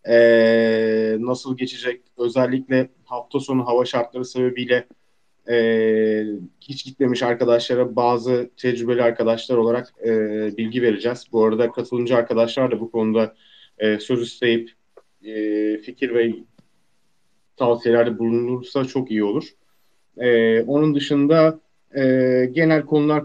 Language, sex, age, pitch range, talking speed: Turkish, male, 30-49, 120-155 Hz, 95 wpm